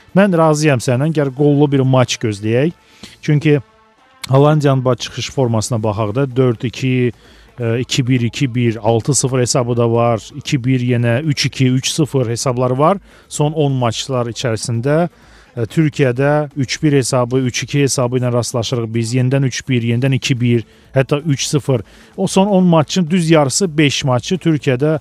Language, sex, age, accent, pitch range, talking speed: Russian, male, 40-59, Turkish, 120-155 Hz, 135 wpm